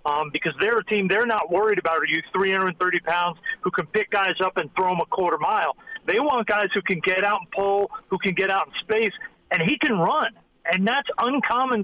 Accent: American